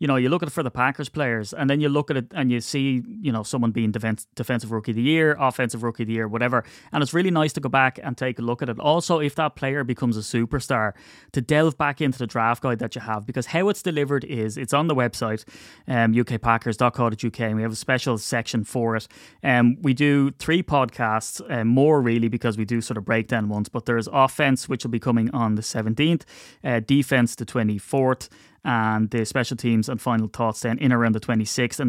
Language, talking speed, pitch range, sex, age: English, 235 wpm, 115-140 Hz, male, 20-39